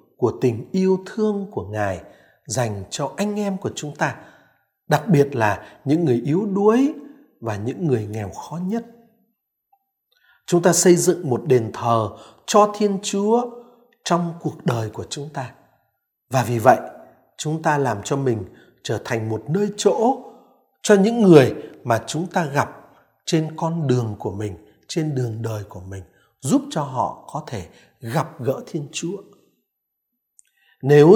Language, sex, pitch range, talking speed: Vietnamese, male, 135-215 Hz, 160 wpm